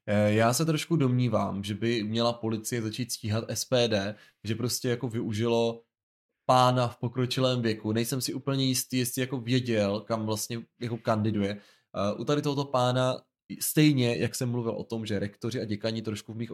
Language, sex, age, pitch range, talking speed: Czech, male, 20-39, 105-125 Hz, 170 wpm